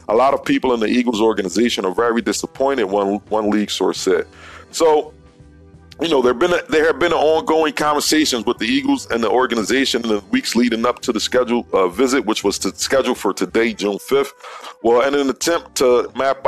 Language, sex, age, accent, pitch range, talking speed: English, male, 40-59, American, 105-135 Hz, 210 wpm